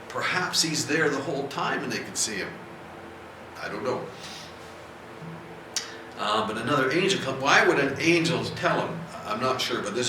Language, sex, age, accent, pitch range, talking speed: English, male, 50-69, American, 110-135 Hz, 180 wpm